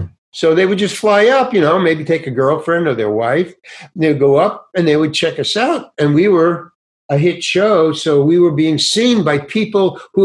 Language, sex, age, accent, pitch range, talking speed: English, male, 60-79, American, 125-175 Hz, 230 wpm